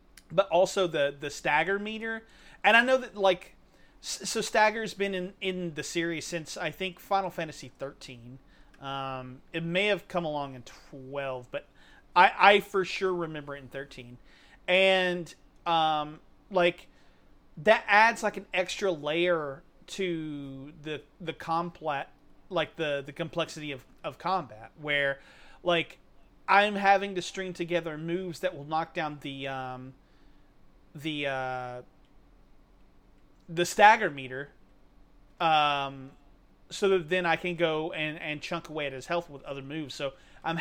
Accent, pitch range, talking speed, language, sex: American, 140-185 Hz, 145 wpm, English, male